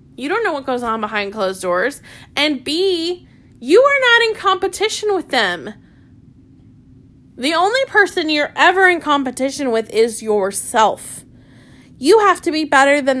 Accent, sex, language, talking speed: American, female, English, 155 wpm